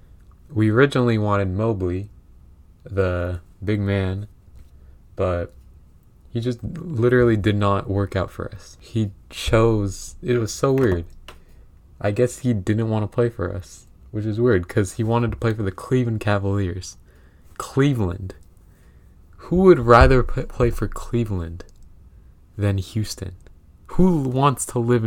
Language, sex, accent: English, male, American